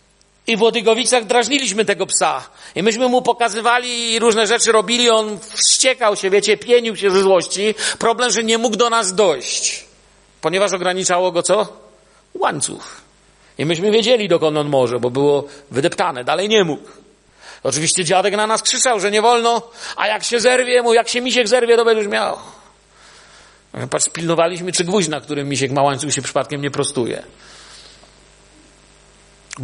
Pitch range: 185-235 Hz